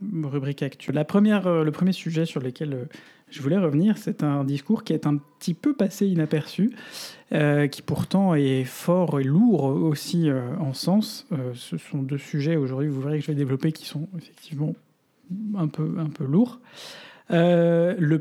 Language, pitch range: French, 145-175 Hz